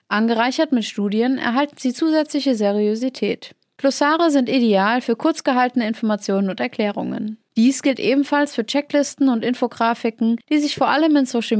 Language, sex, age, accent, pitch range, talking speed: German, female, 30-49, German, 215-275 Hz, 145 wpm